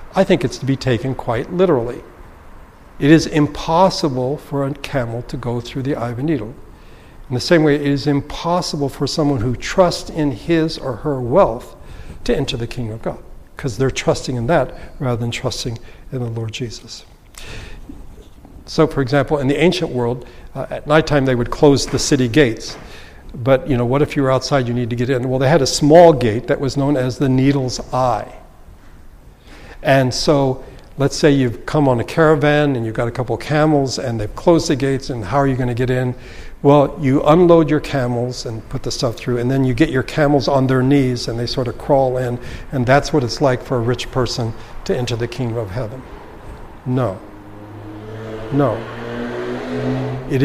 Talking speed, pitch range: 200 wpm, 120-145 Hz